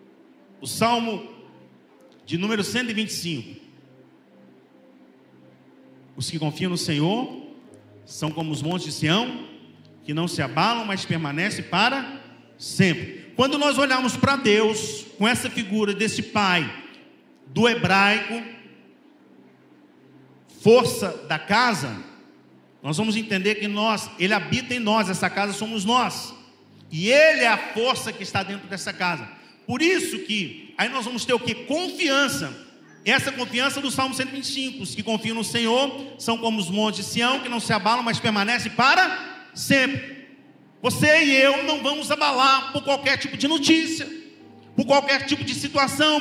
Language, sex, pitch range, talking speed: Portuguese, male, 175-275 Hz, 145 wpm